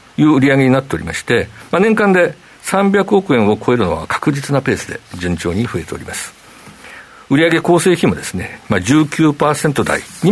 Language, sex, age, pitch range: Japanese, male, 50-69, 115-175 Hz